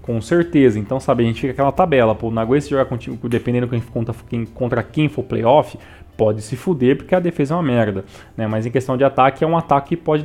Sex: male